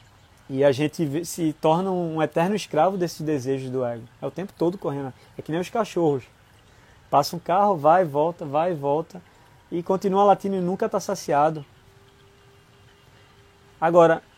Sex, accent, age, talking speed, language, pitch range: male, Brazilian, 20-39, 165 wpm, Portuguese, 130-175 Hz